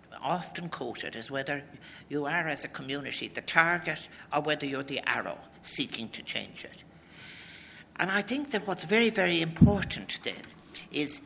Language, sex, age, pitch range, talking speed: English, male, 60-79, 130-185 Hz, 160 wpm